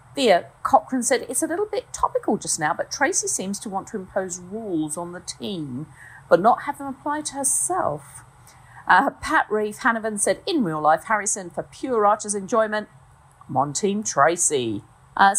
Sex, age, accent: female, 50-69, British